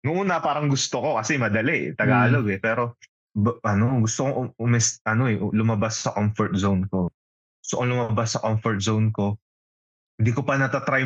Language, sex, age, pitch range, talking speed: Filipino, male, 20-39, 95-120 Hz, 170 wpm